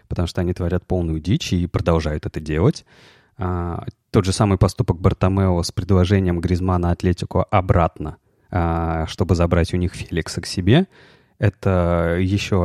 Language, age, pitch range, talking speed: Russian, 20-39, 90-110 Hz, 140 wpm